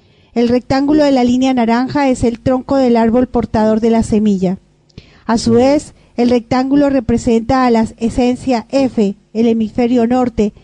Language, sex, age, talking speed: Spanish, female, 40-59, 160 wpm